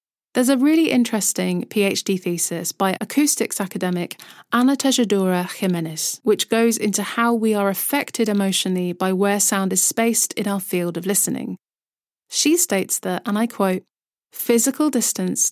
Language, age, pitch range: English, 30-49, 190-230 Hz